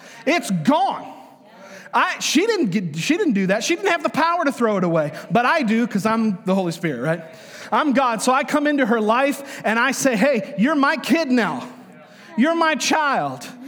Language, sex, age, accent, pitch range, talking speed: English, male, 30-49, American, 215-285 Hz, 195 wpm